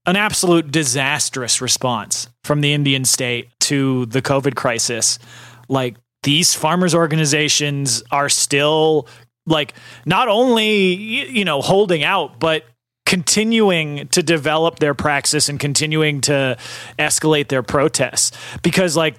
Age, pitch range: 30-49, 125-150 Hz